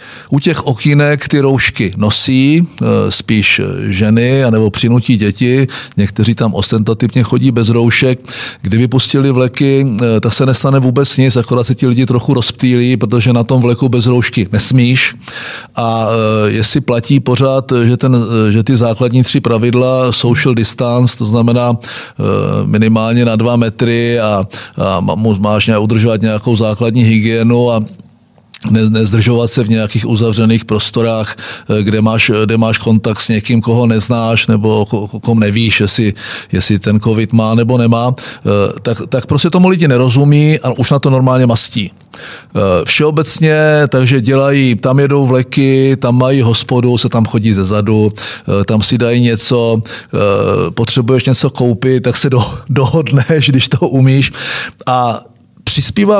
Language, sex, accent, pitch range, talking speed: Czech, male, native, 110-130 Hz, 140 wpm